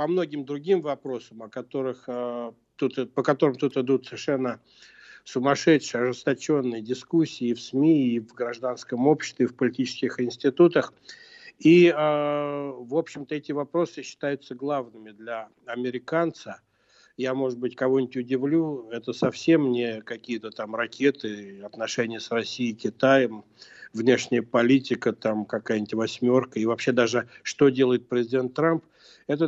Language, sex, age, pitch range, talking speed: Russian, male, 60-79, 120-150 Hz, 130 wpm